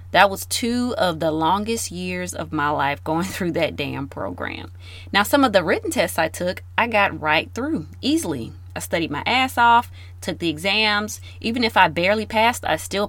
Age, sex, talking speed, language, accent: 30-49, female, 195 wpm, English, American